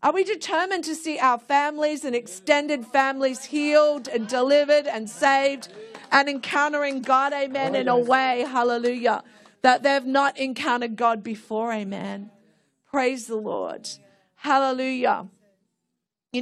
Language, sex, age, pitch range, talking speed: English, female, 40-59, 240-310 Hz, 130 wpm